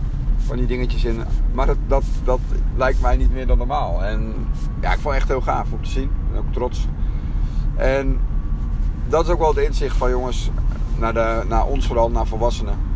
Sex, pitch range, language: male, 80-125 Hz, Dutch